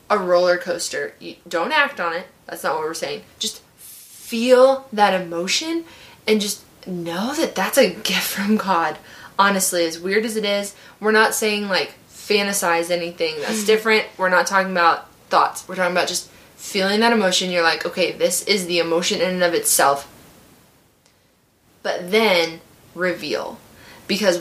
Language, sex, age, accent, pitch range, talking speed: English, female, 20-39, American, 175-210 Hz, 160 wpm